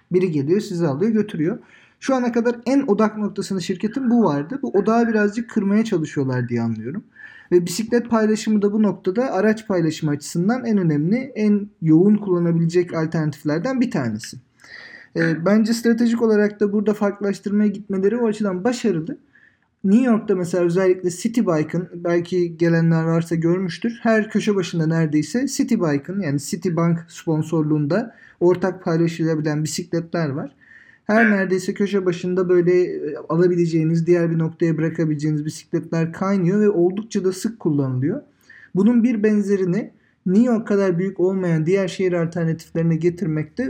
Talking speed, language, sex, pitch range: 140 wpm, Turkish, male, 165-215 Hz